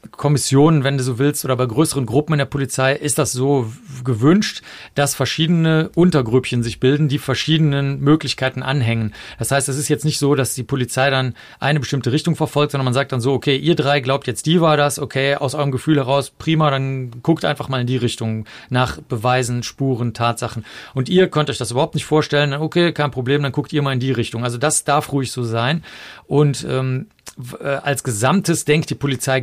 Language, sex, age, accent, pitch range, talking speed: German, male, 40-59, German, 125-150 Hz, 205 wpm